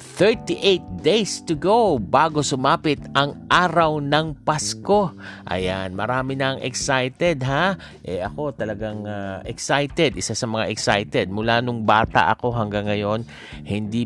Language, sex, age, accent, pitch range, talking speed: Filipino, male, 50-69, native, 100-145 Hz, 130 wpm